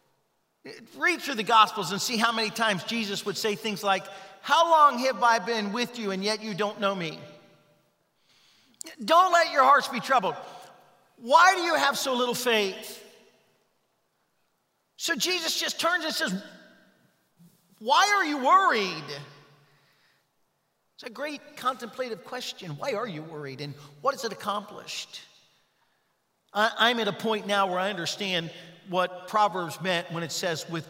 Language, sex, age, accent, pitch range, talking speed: English, male, 50-69, American, 160-225 Hz, 155 wpm